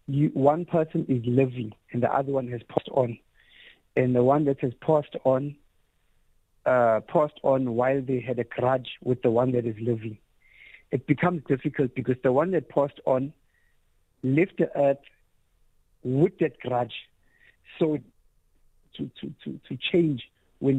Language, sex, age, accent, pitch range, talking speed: English, male, 50-69, South African, 120-150 Hz, 155 wpm